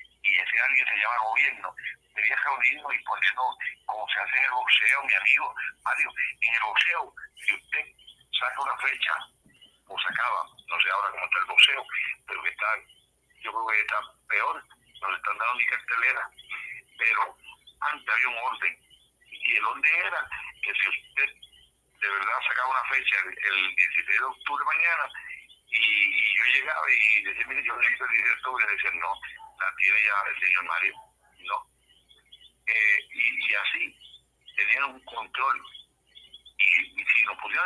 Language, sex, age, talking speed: Spanish, male, 50-69, 175 wpm